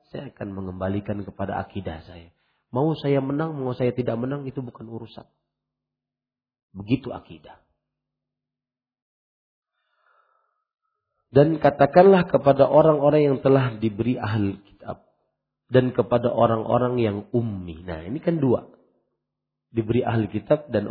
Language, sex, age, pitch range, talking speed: Malay, male, 40-59, 105-140 Hz, 115 wpm